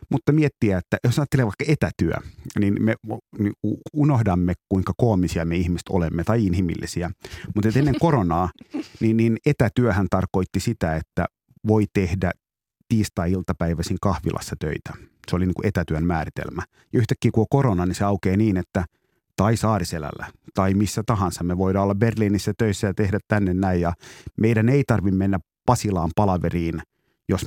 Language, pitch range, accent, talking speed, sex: Finnish, 90-115 Hz, native, 150 wpm, male